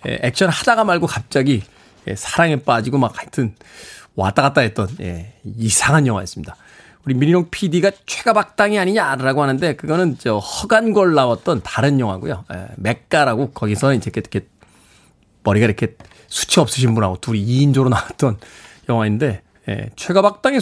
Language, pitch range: Korean, 115-180 Hz